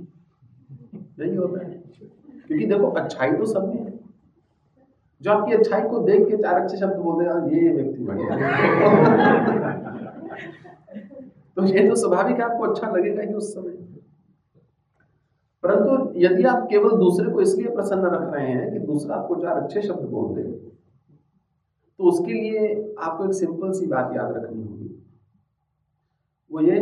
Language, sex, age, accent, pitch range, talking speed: English, male, 50-69, Indian, 130-200 Hz, 130 wpm